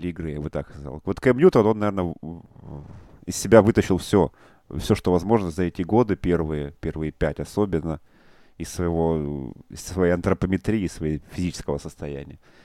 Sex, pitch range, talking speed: male, 80-105 Hz, 155 wpm